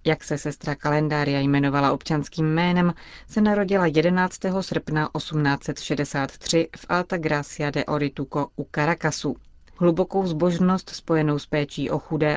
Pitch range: 150-175 Hz